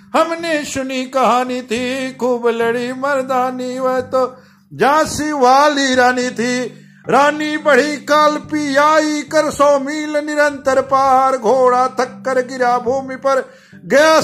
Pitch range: 250-285 Hz